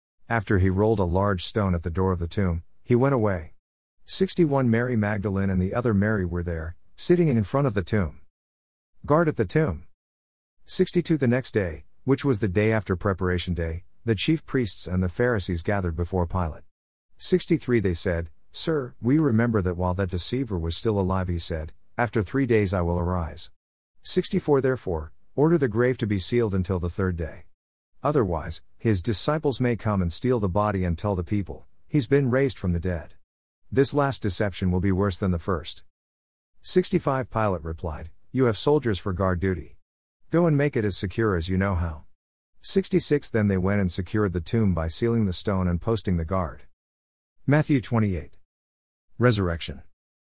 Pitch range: 85-120 Hz